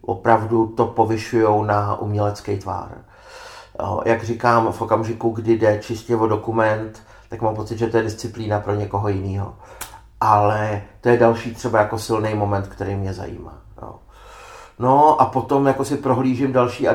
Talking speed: 155 wpm